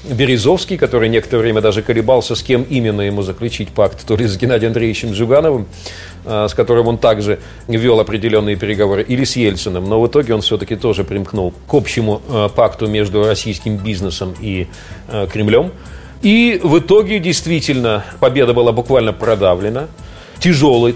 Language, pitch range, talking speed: Russian, 100-135 Hz, 150 wpm